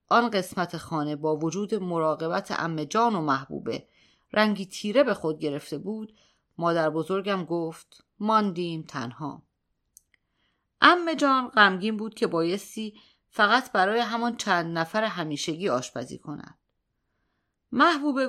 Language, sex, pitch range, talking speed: Persian, female, 170-235 Hz, 110 wpm